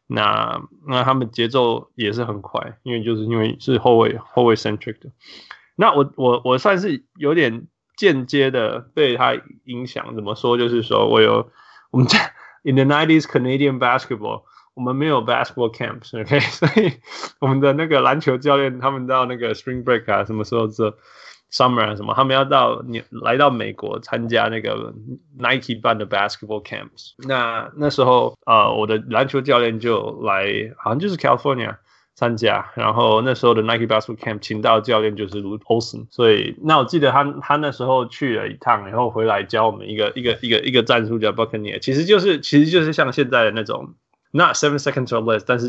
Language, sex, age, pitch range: Chinese, male, 20-39, 115-135 Hz